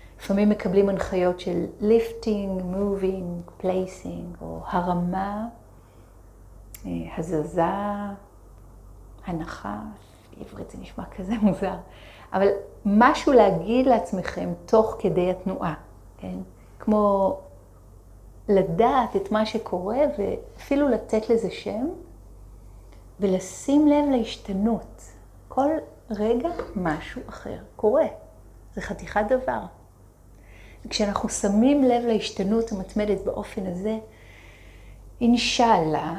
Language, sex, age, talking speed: Hebrew, female, 30-49, 85 wpm